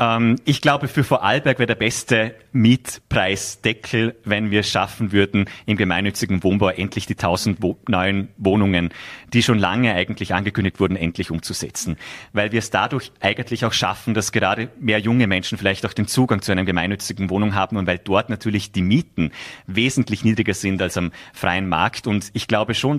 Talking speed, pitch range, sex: 180 wpm, 95-115 Hz, male